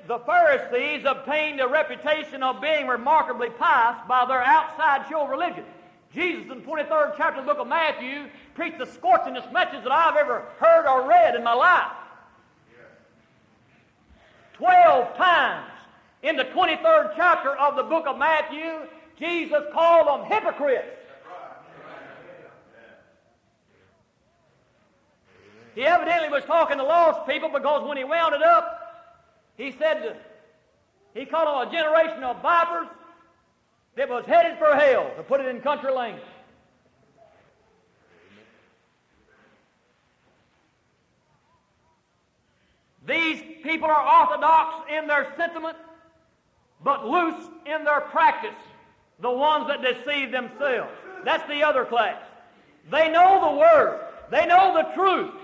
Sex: male